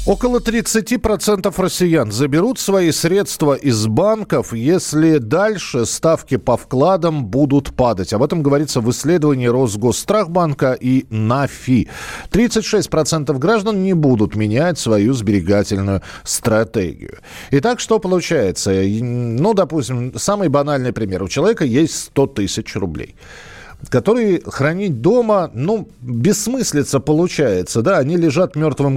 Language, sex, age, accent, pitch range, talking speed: Russian, male, 40-59, native, 110-175 Hz, 115 wpm